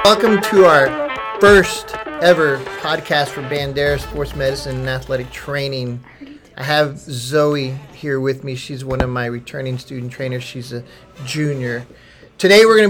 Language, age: English, 40-59